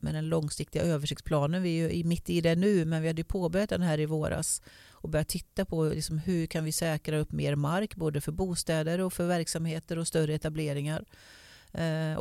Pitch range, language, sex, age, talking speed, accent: 150-175 Hz, Swedish, female, 40-59, 210 wpm, native